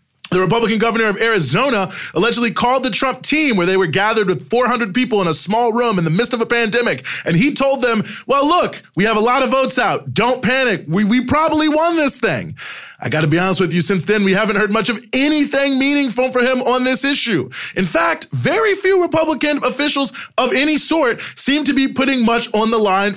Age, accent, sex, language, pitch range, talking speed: 20-39, American, male, English, 190-260 Hz, 220 wpm